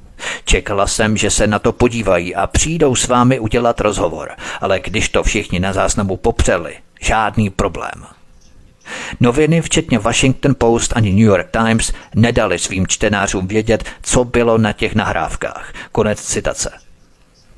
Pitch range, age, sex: 100-125 Hz, 50-69, male